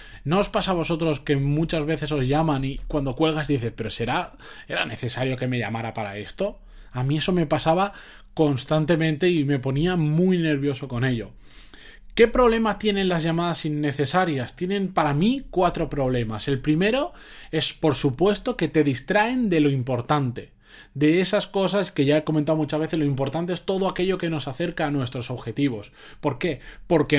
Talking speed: 180 wpm